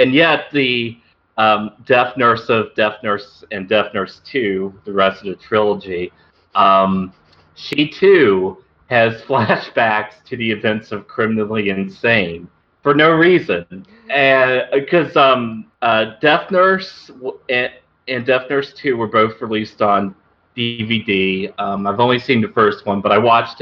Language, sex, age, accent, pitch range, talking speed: English, male, 40-59, American, 95-135 Hz, 140 wpm